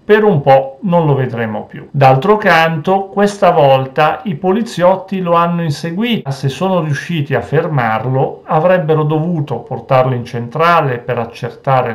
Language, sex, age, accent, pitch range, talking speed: Italian, male, 40-59, native, 130-170 Hz, 140 wpm